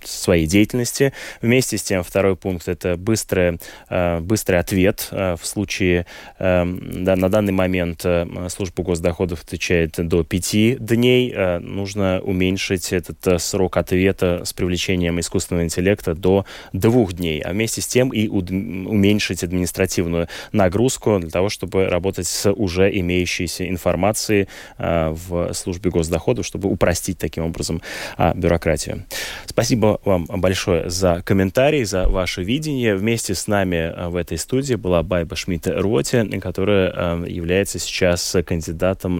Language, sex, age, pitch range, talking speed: Russian, male, 20-39, 85-100 Hz, 125 wpm